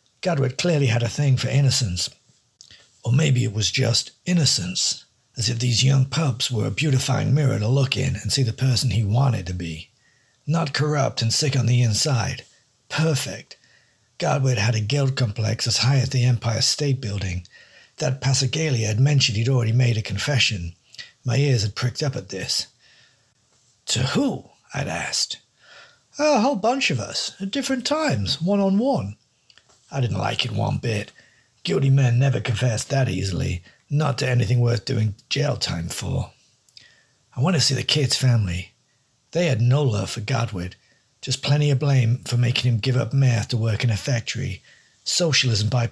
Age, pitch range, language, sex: 60-79, 115-140 Hz, English, male